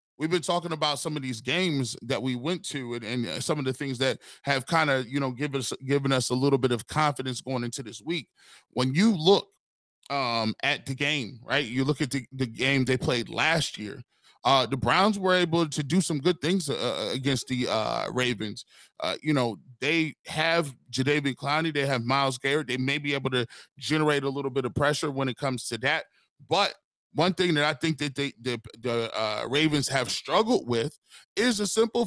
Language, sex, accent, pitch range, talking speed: English, male, American, 130-175 Hz, 215 wpm